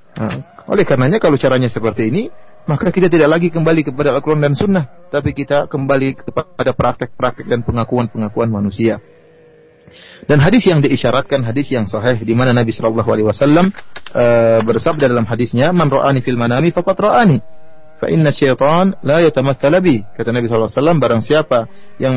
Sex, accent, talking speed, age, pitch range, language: male, native, 150 wpm, 30-49, 120-175 Hz, Indonesian